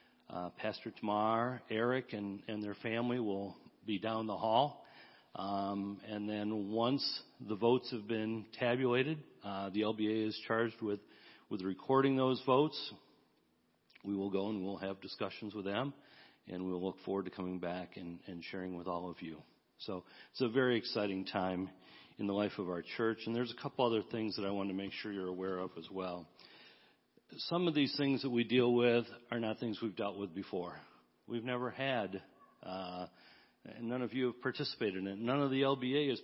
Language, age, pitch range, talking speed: English, 40-59, 100-120 Hz, 190 wpm